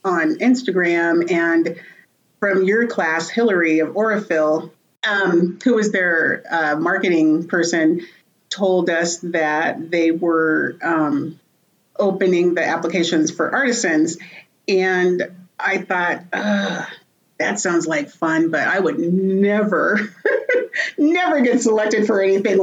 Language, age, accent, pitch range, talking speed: English, 40-59, American, 165-210 Hz, 115 wpm